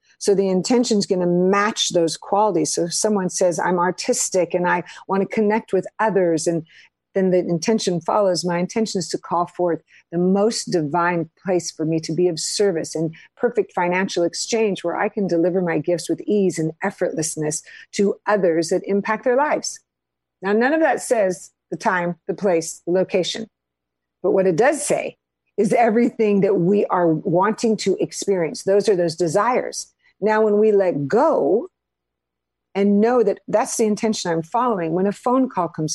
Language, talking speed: English, 180 wpm